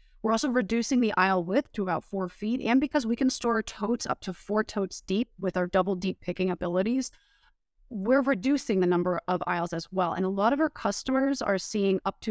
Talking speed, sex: 220 wpm, female